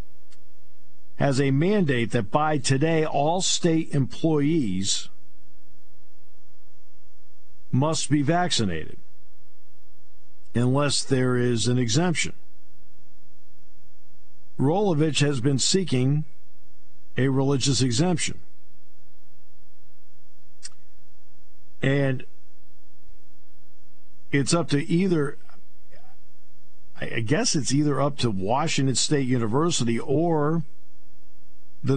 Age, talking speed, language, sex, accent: 50-69, 75 wpm, English, male, American